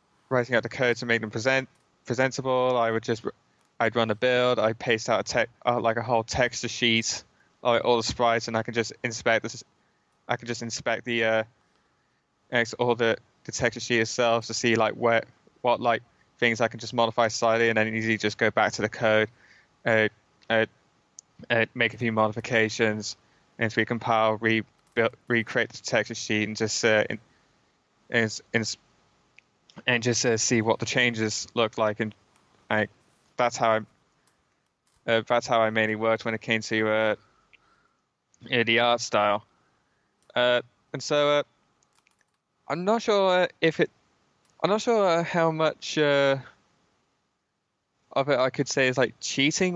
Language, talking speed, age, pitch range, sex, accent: English, 175 wpm, 20-39, 110-130 Hz, male, British